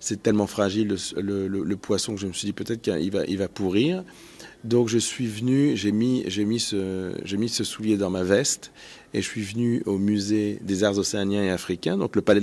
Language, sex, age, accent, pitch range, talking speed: French, male, 40-59, French, 105-125 Hz, 235 wpm